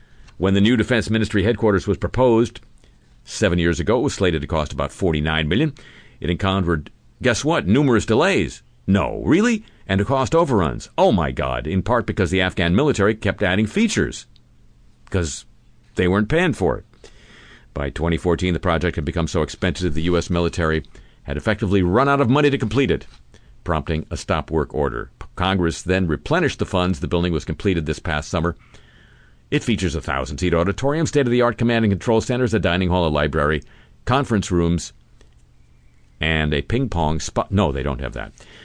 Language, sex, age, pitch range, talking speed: English, male, 50-69, 80-110 Hz, 170 wpm